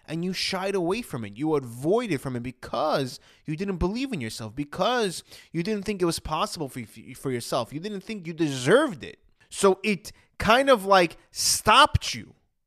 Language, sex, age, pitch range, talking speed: English, male, 20-39, 145-195 Hz, 185 wpm